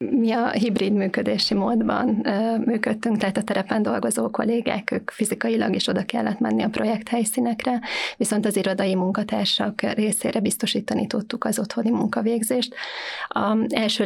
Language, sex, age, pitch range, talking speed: Hungarian, female, 20-39, 210-240 Hz, 130 wpm